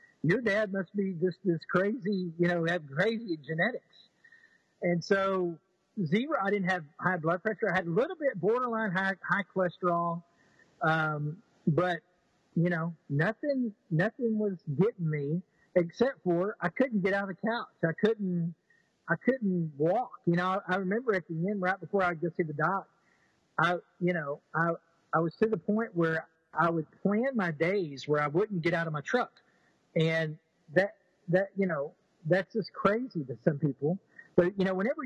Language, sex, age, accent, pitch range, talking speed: English, male, 40-59, American, 160-195 Hz, 180 wpm